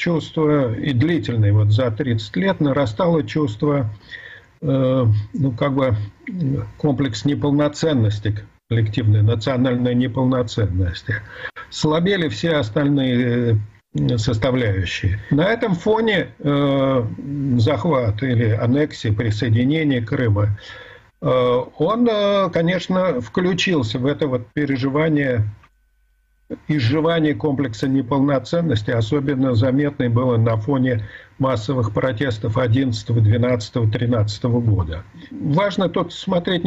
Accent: native